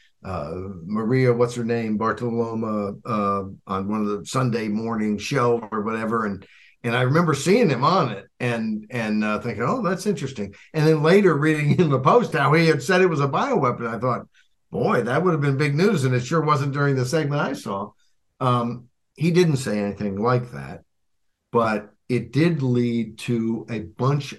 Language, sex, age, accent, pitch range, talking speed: English, male, 60-79, American, 110-150 Hz, 190 wpm